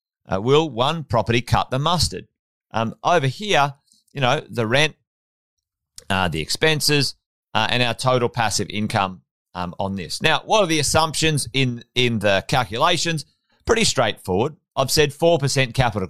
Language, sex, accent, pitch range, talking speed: English, male, Australian, 110-155 Hz, 155 wpm